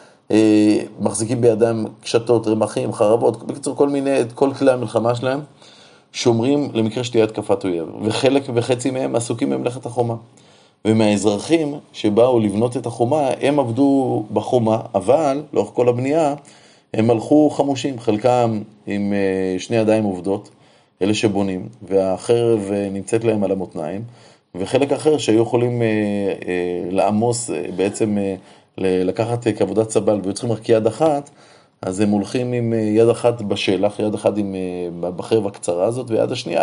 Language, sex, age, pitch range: Hebrew, male, 30-49, 105-125 Hz